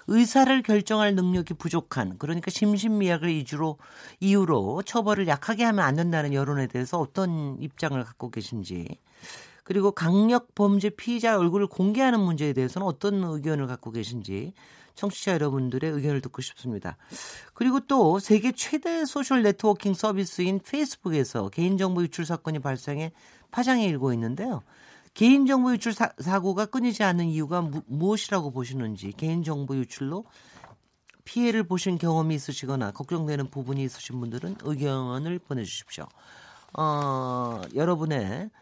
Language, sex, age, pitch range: Korean, male, 40-59, 140-205 Hz